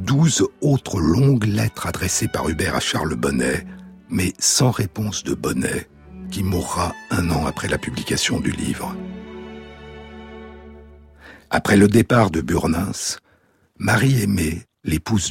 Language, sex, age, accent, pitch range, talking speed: French, male, 60-79, French, 80-120 Hz, 125 wpm